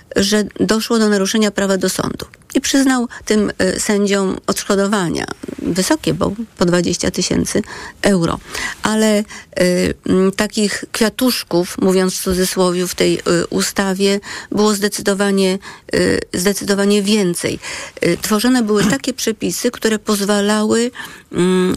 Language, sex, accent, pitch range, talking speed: Polish, female, native, 190-230 Hz, 100 wpm